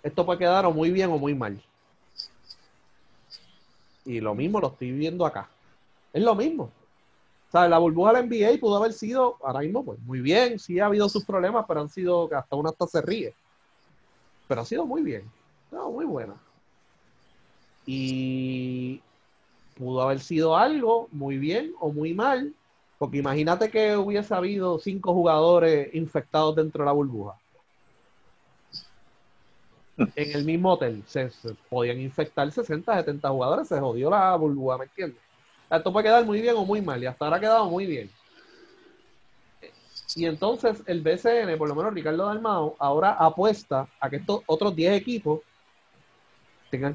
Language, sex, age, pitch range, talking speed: Spanish, male, 30-49, 145-205 Hz, 165 wpm